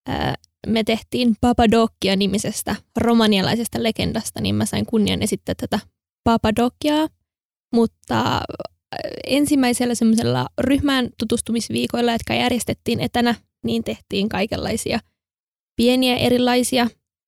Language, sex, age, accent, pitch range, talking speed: Finnish, female, 20-39, native, 215-245 Hz, 85 wpm